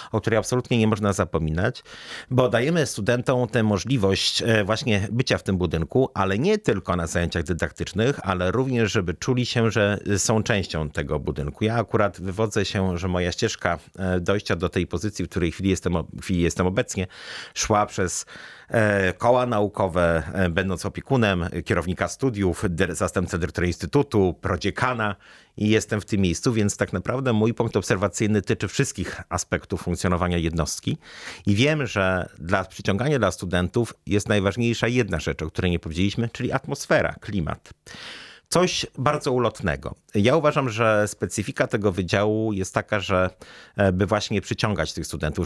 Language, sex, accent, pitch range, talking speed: Polish, male, native, 90-115 Hz, 150 wpm